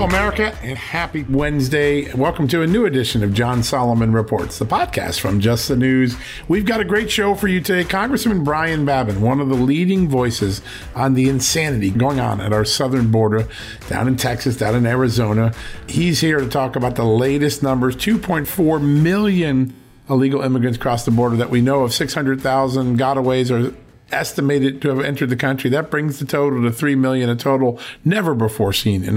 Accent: American